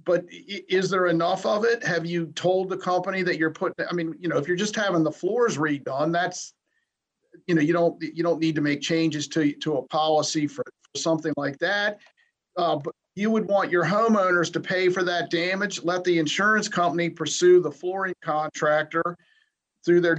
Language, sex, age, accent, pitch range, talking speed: English, male, 50-69, American, 165-200 Hz, 200 wpm